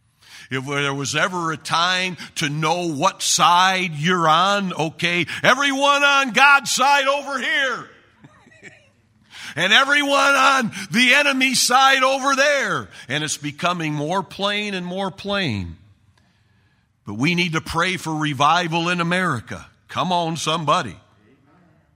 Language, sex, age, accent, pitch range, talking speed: English, male, 50-69, American, 140-185 Hz, 130 wpm